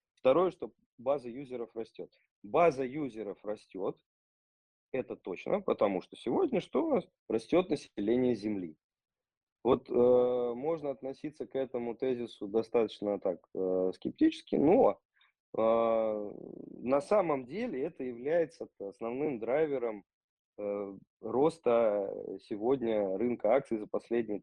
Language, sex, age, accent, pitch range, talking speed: Russian, male, 20-39, native, 105-130 Hz, 110 wpm